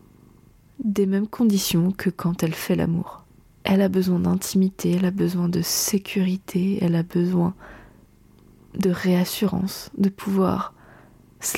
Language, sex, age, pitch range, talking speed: French, female, 20-39, 185-210 Hz, 130 wpm